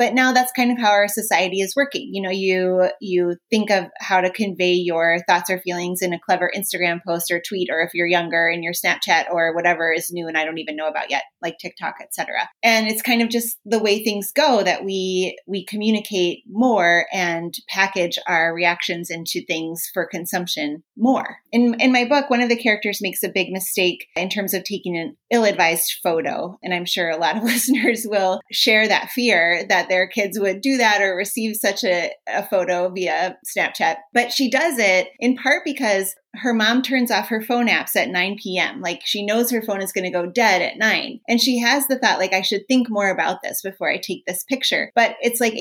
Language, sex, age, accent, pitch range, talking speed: English, female, 30-49, American, 180-235 Hz, 220 wpm